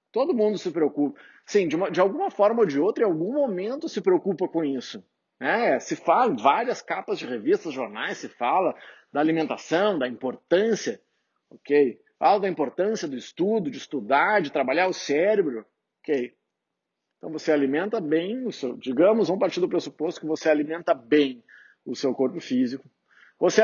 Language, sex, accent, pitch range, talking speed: Portuguese, male, Brazilian, 145-220 Hz, 175 wpm